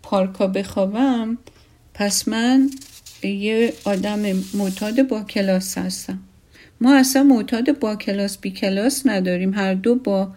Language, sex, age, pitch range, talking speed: Persian, female, 50-69, 185-255 Hz, 120 wpm